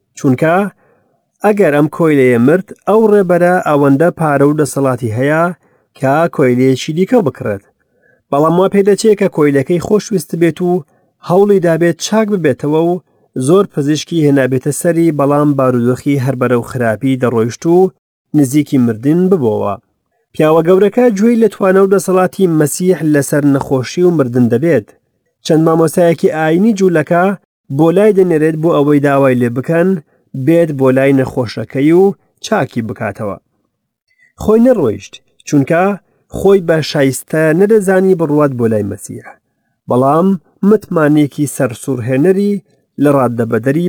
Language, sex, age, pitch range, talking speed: English, male, 40-59, 135-185 Hz, 130 wpm